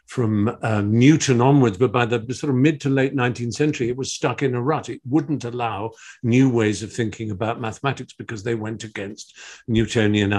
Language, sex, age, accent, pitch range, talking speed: English, male, 50-69, British, 105-140 Hz, 195 wpm